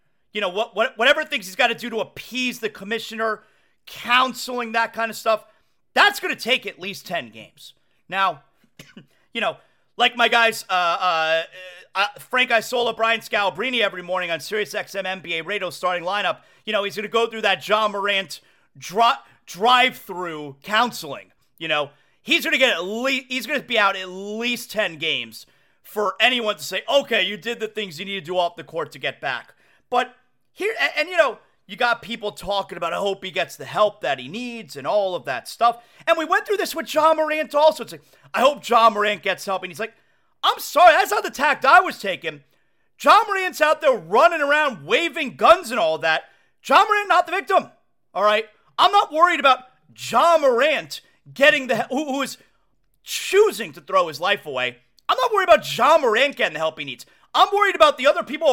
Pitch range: 190-290 Hz